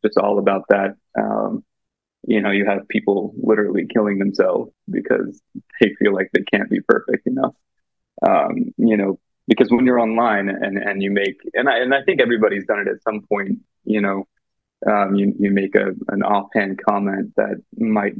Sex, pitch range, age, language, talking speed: male, 100-115 Hz, 20-39, English, 190 wpm